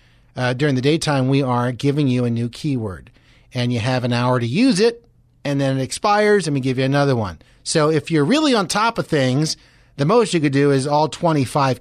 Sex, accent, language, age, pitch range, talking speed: male, American, English, 30-49, 125-180 Hz, 230 wpm